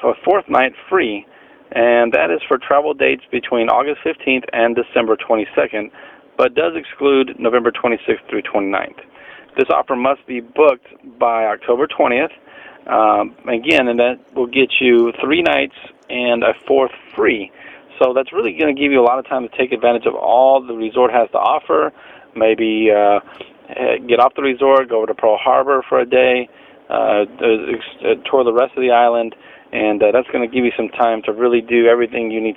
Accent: American